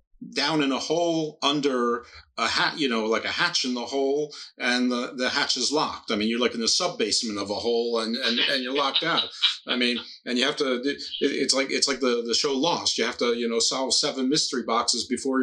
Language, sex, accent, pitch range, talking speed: English, male, American, 110-130 Hz, 235 wpm